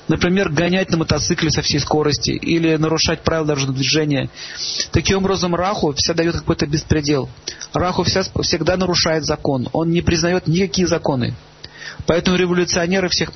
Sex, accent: male, native